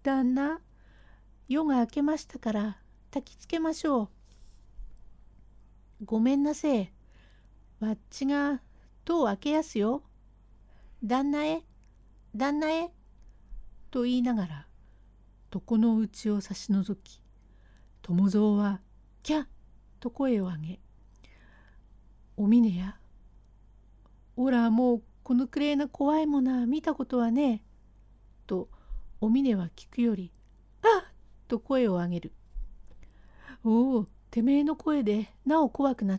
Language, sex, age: Japanese, female, 60-79